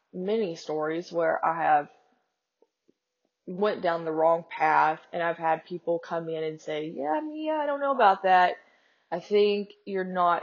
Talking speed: 165 wpm